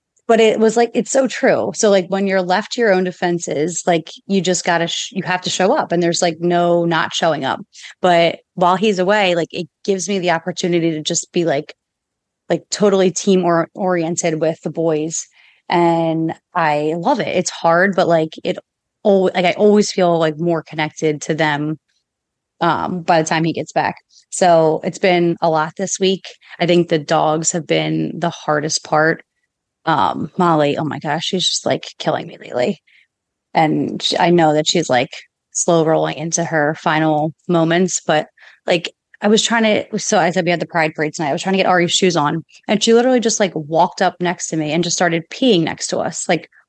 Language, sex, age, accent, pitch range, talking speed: English, female, 30-49, American, 160-190 Hz, 210 wpm